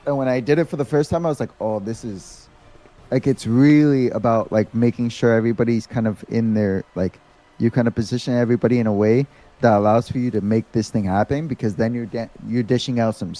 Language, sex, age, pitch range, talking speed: English, male, 20-39, 115-145 Hz, 235 wpm